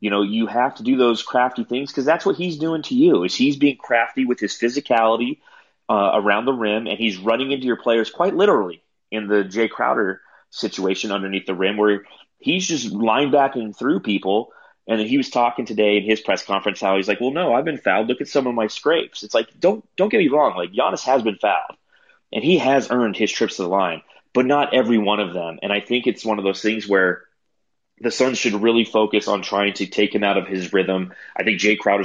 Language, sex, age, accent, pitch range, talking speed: English, male, 30-49, American, 100-120 Hz, 240 wpm